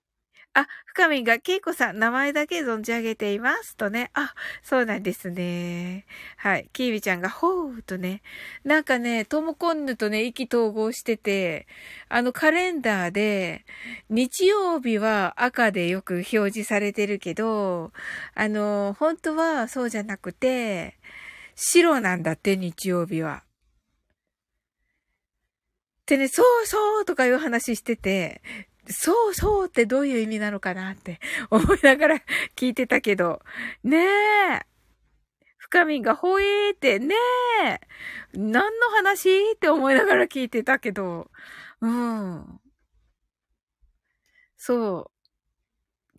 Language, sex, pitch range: Japanese, female, 205-325 Hz